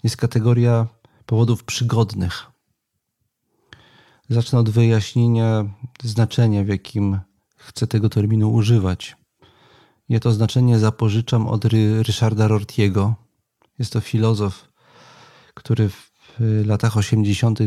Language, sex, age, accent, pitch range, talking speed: Polish, male, 40-59, native, 110-120 Hz, 95 wpm